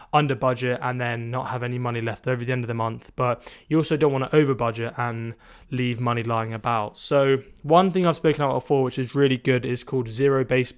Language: English